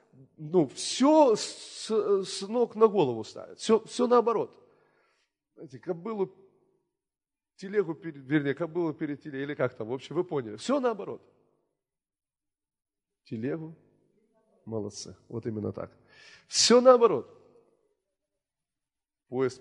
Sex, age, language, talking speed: male, 30-49, Russian, 100 wpm